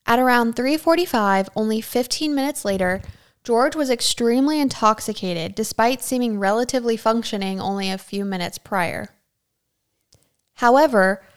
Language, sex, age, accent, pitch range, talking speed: English, female, 10-29, American, 195-240 Hz, 110 wpm